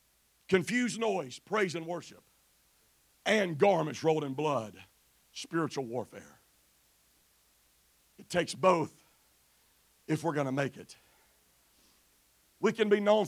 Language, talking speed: English, 115 wpm